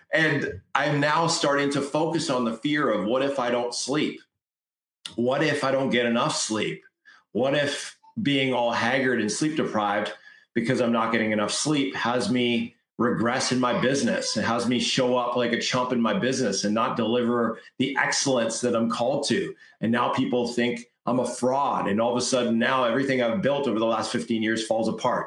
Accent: American